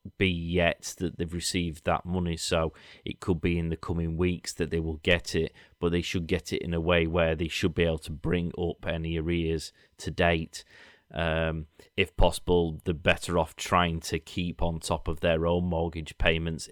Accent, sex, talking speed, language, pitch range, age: British, male, 200 wpm, English, 80-90 Hz, 30-49